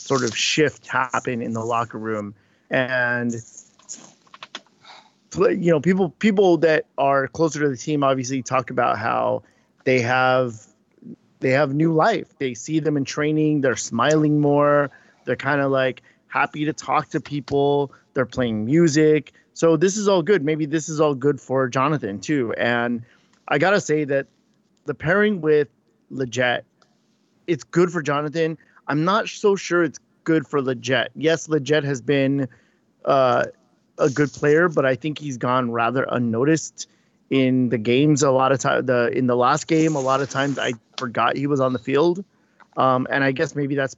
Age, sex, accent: 30-49, male, American